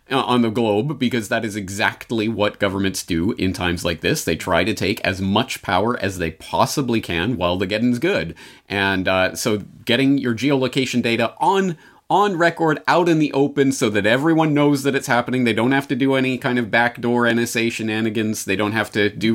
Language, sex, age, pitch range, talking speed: English, male, 30-49, 105-155 Hz, 210 wpm